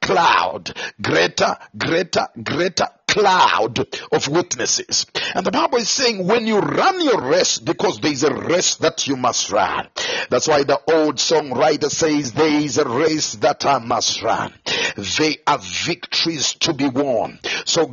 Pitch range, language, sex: 150-185 Hz, English, male